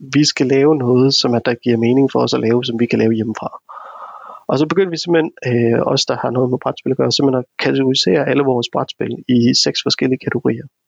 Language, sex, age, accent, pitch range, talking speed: Danish, male, 30-49, native, 135-160 Hz, 230 wpm